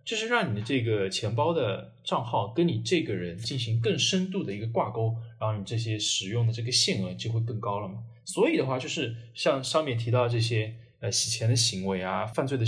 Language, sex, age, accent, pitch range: Chinese, male, 20-39, native, 110-135 Hz